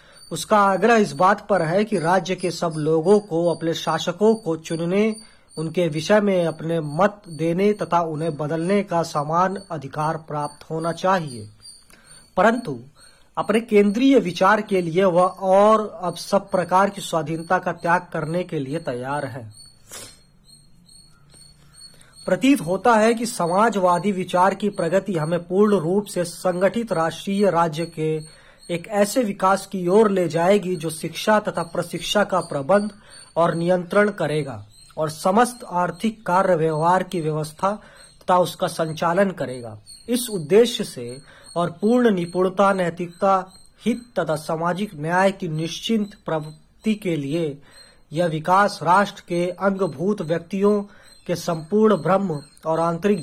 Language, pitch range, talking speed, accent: Hindi, 160-195 Hz, 135 wpm, native